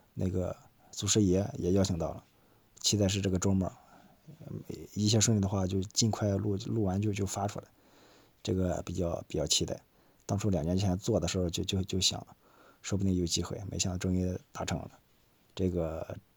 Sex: male